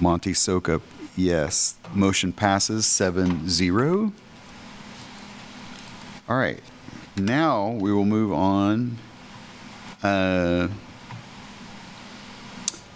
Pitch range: 90-110 Hz